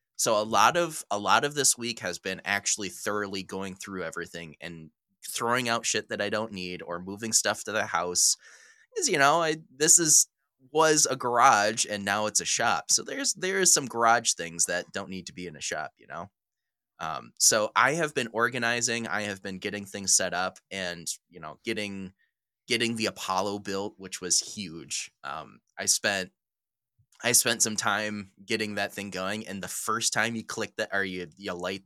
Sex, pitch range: male, 95-115 Hz